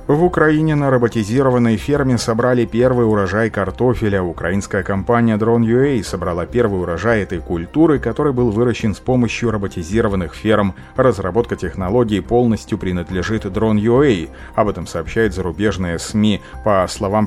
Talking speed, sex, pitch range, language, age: 125 wpm, male, 95-120 Hz, Russian, 30-49